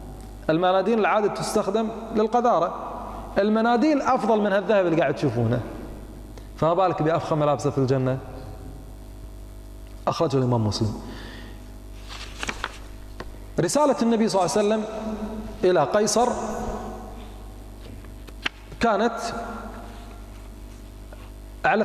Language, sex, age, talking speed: Arabic, male, 30-49, 80 wpm